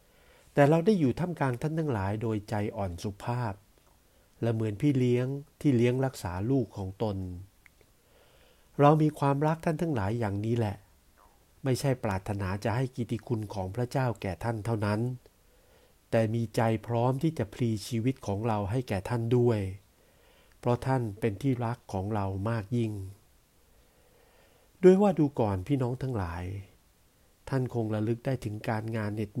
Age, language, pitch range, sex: 60-79, Thai, 100-125 Hz, male